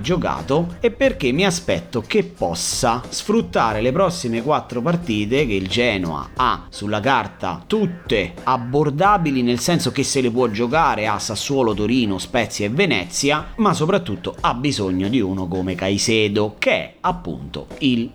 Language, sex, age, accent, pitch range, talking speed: Italian, male, 30-49, native, 100-135 Hz, 150 wpm